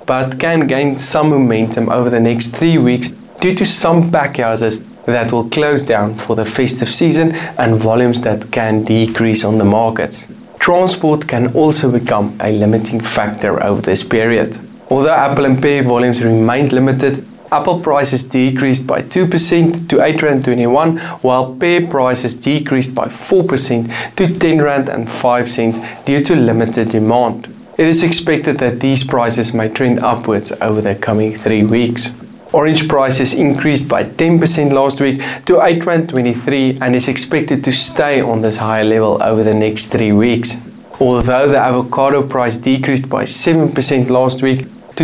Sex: male